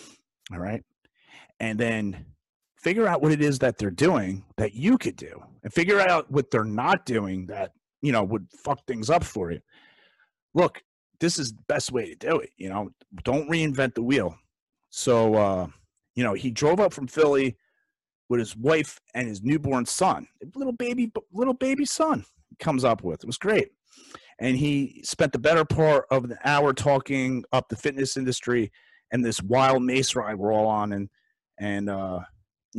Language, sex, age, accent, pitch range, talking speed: English, male, 40-59, American, 100-140 Hz, 180 wpm